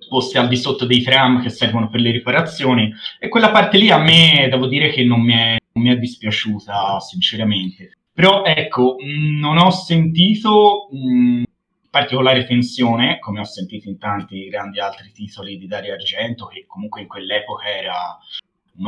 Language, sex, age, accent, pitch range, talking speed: Italian, male, 30-49, native, 110-145 Hz, 170 wpm